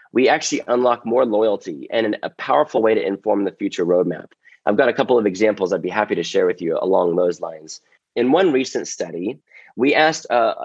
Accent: American